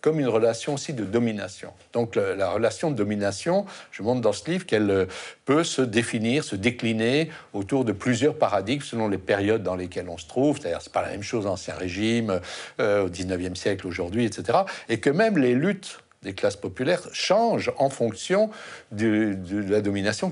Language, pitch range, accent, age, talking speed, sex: French, 100-130 Hz, French, 60-79, 190 wpm, male